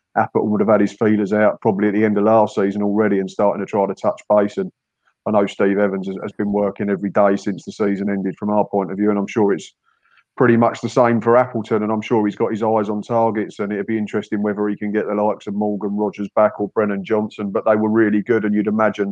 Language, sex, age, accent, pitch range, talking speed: English, male, 30-49, British, 100-110 Hz, 265 wpm